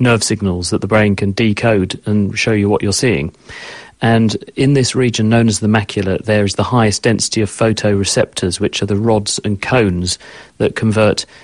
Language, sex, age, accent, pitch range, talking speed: English, male, 40-59, British, 105-115 Hz, 190 wpm